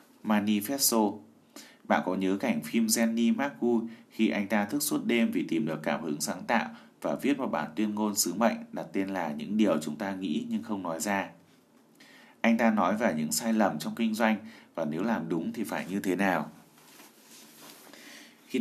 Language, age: Vietnamese, 20-39